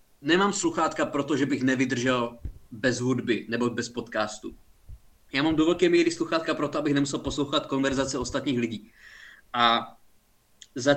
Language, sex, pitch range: Czech, male, 130-190 Hz